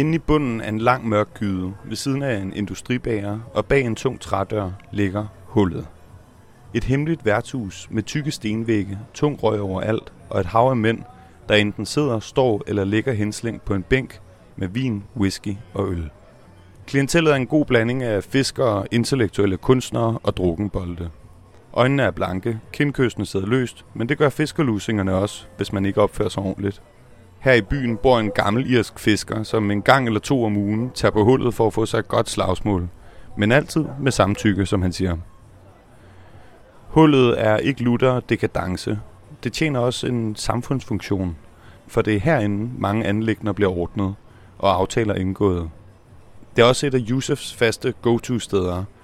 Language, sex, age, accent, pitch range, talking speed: Danish, male, 30-49, native, 100-125 Hz, 175 wpm